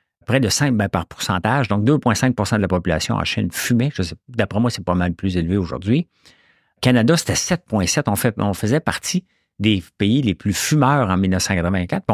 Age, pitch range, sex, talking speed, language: 50-69, 90-130 Hz, male, 195 wpm, English